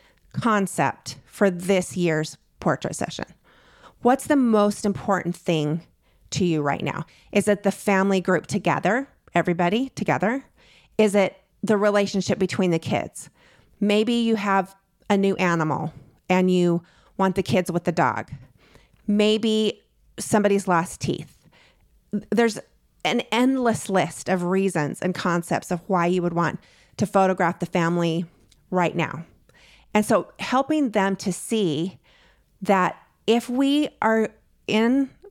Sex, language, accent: female, English, American